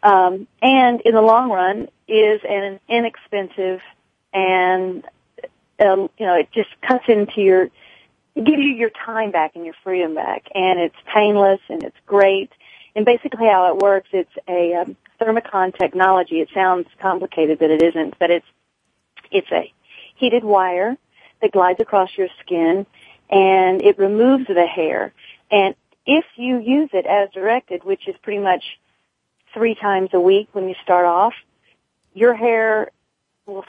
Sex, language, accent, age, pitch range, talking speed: female, English, American, 40-59, 185-230 Hz, 155 wpm